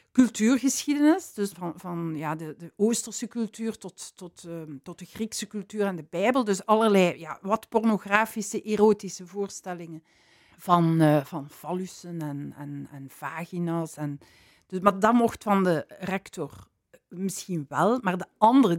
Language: Dutch